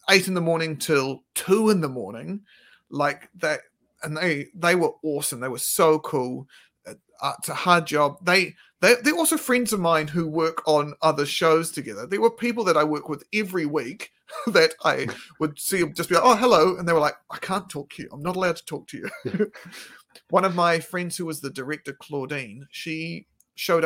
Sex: male